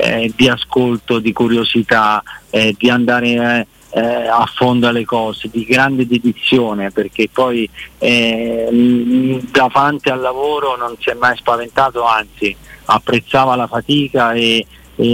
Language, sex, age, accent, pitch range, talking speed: Italian, male, 40-59, native, 115-130 Hz, 135 wpm